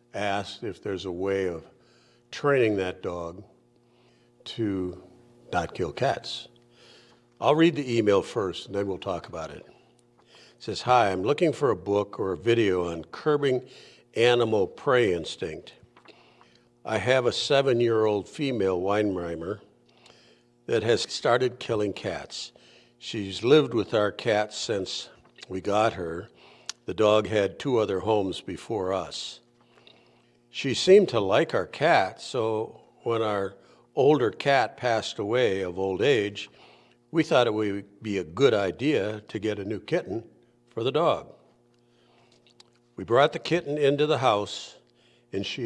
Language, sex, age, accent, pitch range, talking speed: English, male, 60-79, American, 90-120 Hz, 145 wpm